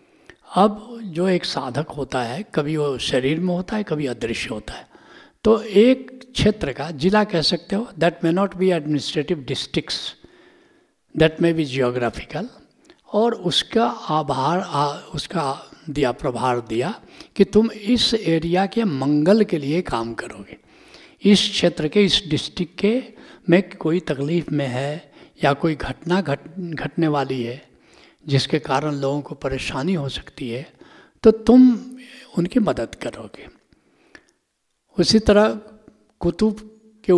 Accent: native